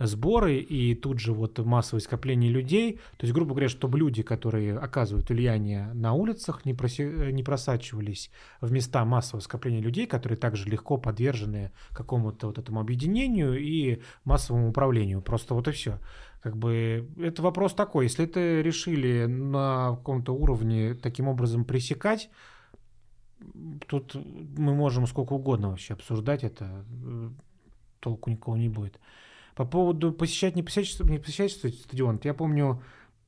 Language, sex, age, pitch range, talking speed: Russian, male, 30-49, 115-150 Hz, 140 wpm